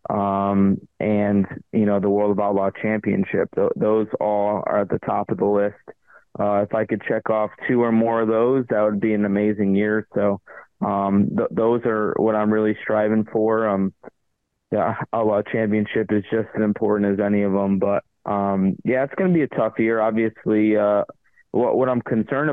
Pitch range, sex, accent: 105-115 Hz, male, American